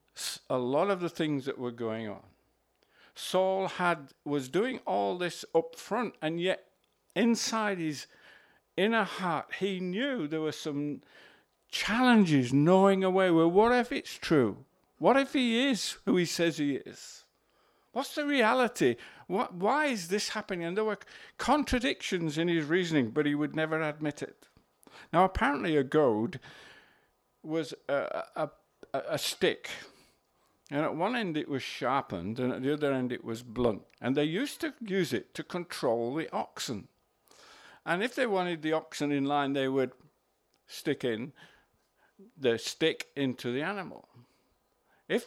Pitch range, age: 125-190 Hz, 50-69